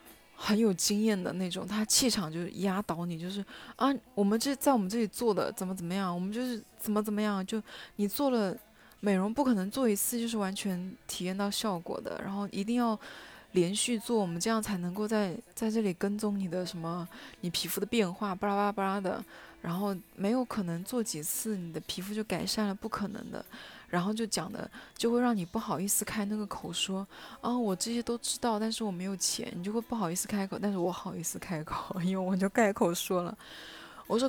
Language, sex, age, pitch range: Chinese, female, 20-39, 185-220 Hz